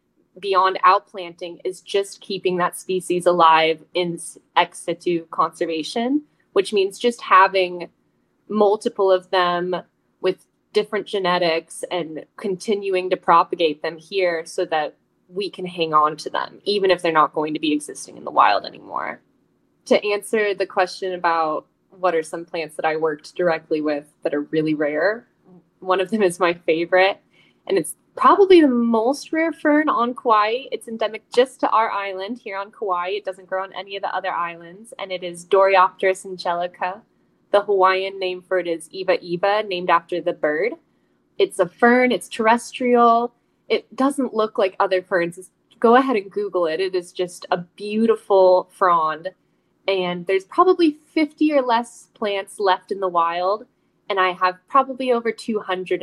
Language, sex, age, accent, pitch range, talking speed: English, female, 10-29, American, 175-215 Hz, 165 wpm